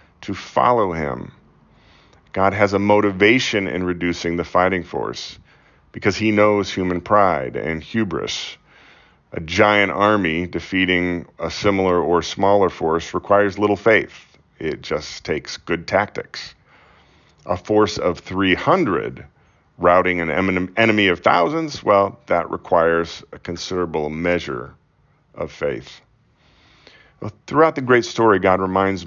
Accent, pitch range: American, 90-105 Hz